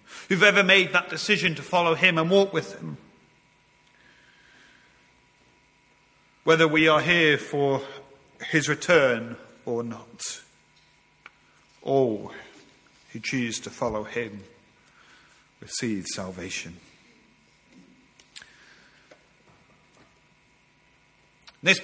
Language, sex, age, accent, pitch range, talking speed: English, male, 40-59, British, 130-170 Hz, 80 wpm